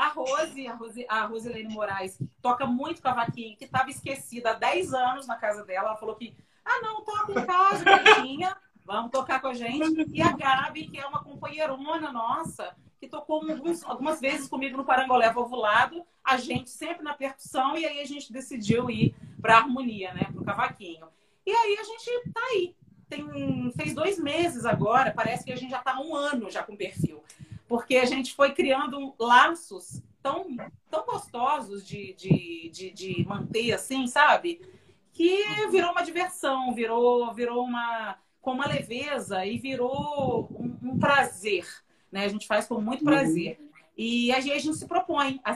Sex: female